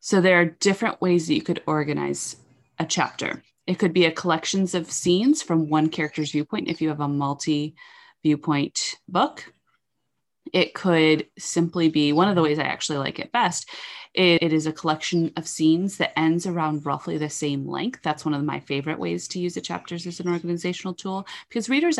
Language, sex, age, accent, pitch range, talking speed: English, female, 30-49, American, 150-180 Hz, 195 wpm